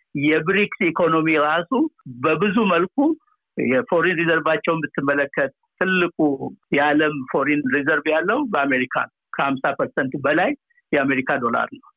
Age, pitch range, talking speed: 60-79, 155-205 Hz, 95 wpm